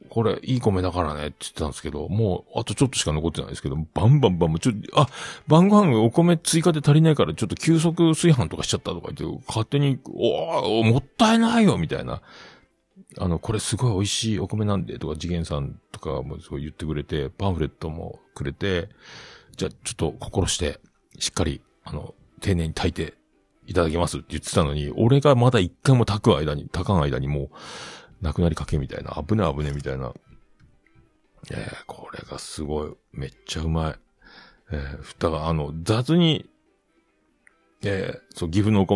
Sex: male